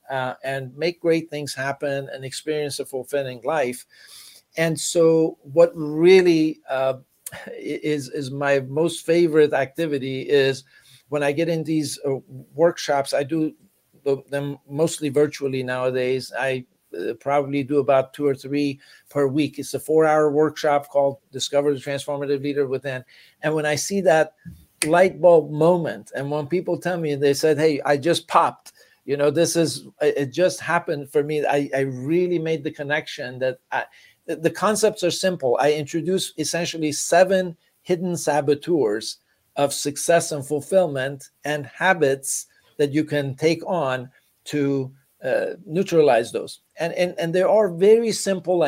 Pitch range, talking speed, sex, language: 140-165 Hz, 155 wpm, male, English